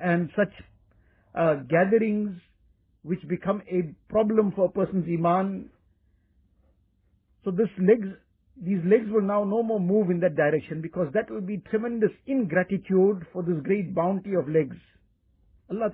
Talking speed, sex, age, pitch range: 135 wpm, male, 50-69, 165-205 Hz